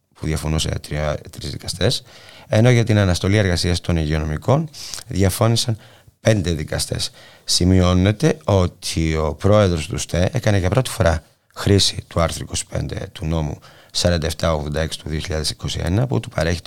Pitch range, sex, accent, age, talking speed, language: 85-115 Hz, male, Spanish, 30-49, 130 wpm, Greek